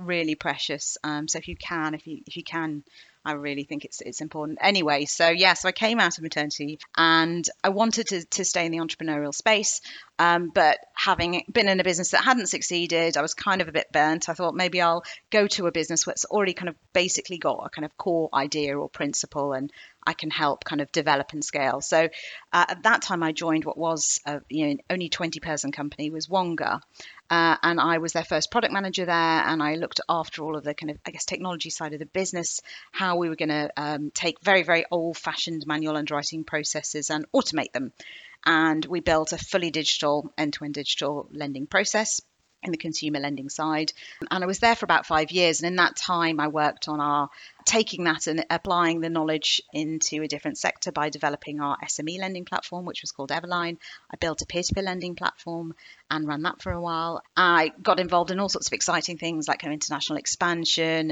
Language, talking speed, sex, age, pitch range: English, 215 wpm, female, 40-59, 150-175 Hz